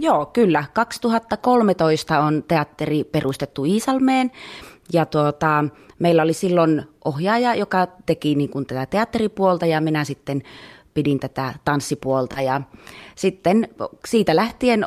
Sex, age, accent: female, 30-49, native